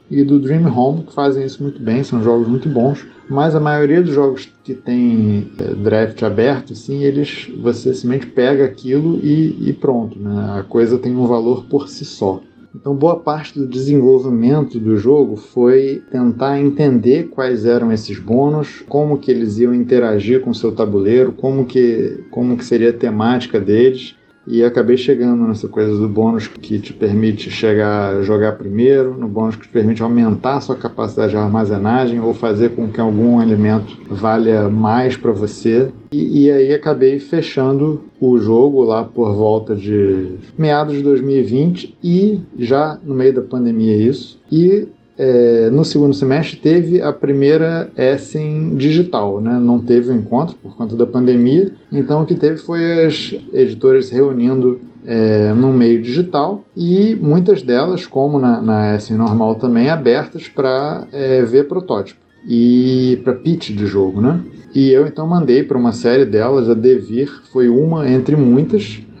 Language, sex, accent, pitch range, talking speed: Portuguese, male, Brazilian, 115-140 Hz, 165 wpm